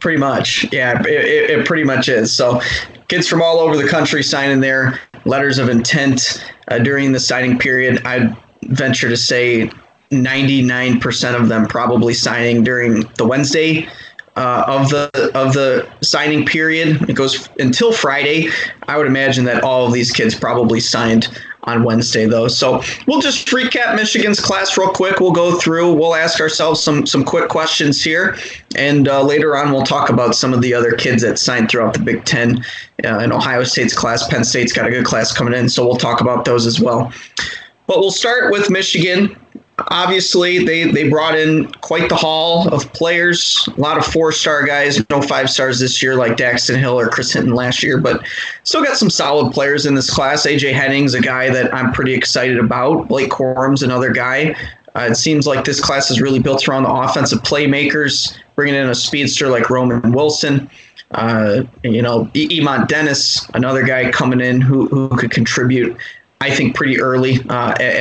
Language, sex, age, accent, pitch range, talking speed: English, male, 20-39, American, 125-155 Hz, 185 wpm